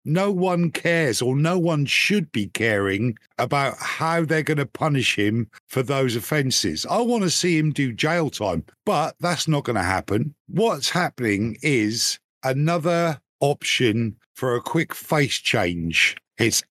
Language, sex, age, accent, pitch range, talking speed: English, male, 50-69, British, 120-155 Hz, 160 wpm